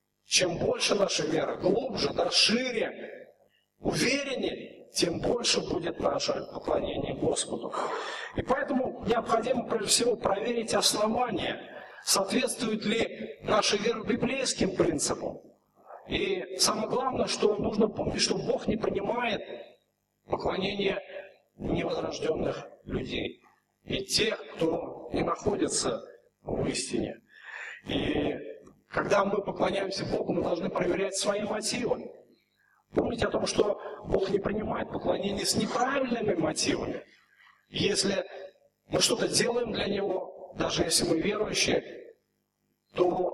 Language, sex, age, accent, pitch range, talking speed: Russian, male, 50-69, native, 195-255 Hz, 110 wpm